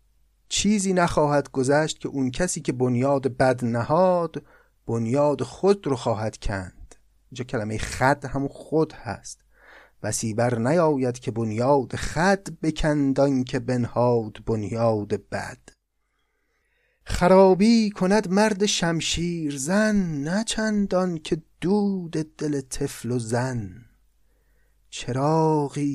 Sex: male